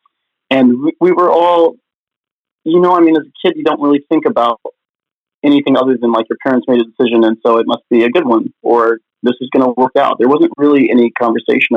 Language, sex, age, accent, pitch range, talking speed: English, male, 30-49, American, 115-165 Hz, 230 wpm